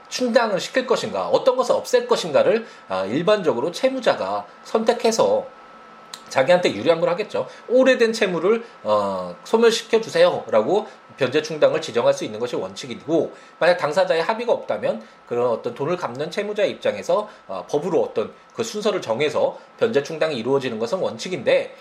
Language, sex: Korean, male